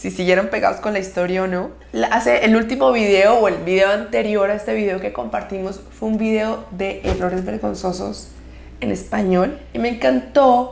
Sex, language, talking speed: female, Spanish, 180 wpm